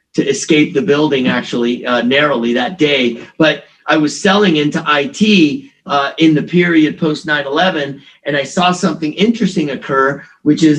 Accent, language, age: American, English, 40-59